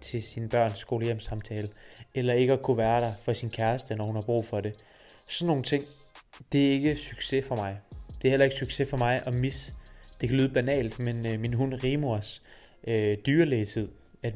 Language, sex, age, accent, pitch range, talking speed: Danish, male, 20-39, native, 120-145 Hz, 200 wpm